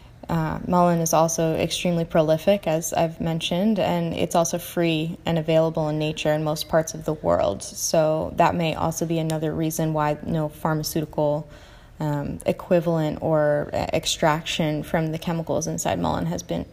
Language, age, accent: English, 10-29, American